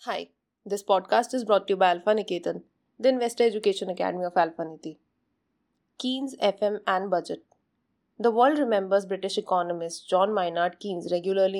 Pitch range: 175-215 Hz